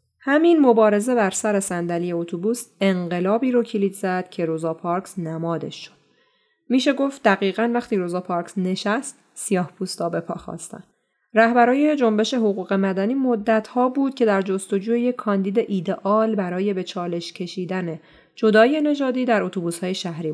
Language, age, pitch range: Persian, 30-49, 180-240 Hz